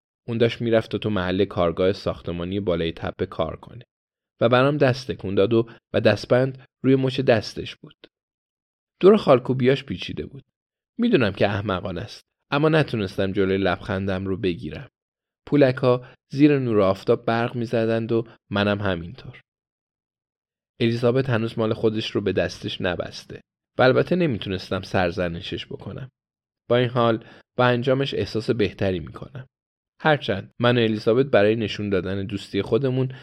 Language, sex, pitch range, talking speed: Persian, male, 95-120 Hz, 140 wpm